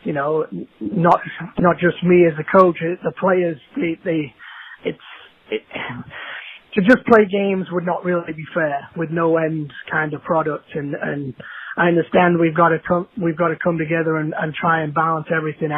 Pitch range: 155-175 Hz